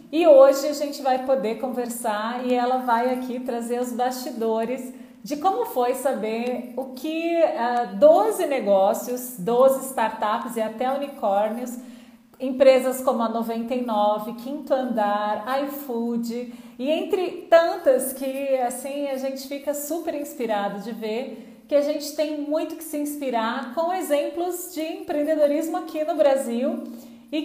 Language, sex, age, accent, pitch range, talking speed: Portuguese, female, 40-59, Brazilian, 230-280 Hz, 140 wpm